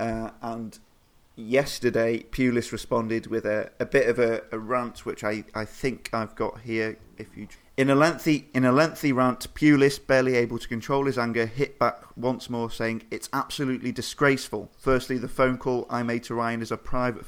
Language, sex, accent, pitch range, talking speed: English, male, British, 110-125 Hz, 190 wpm